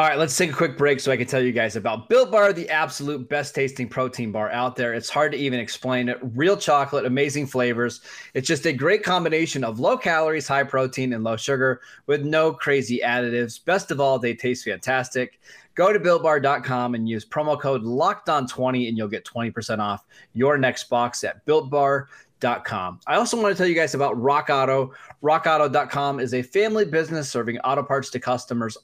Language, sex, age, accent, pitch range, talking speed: English, male, 20-39, American, 125-160 Hz, 205 wpm